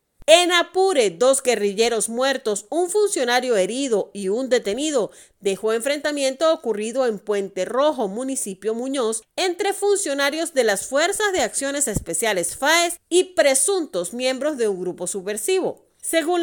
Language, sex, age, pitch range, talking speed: Spanish, female, 40-59, 215-300 Hz, 130 wpm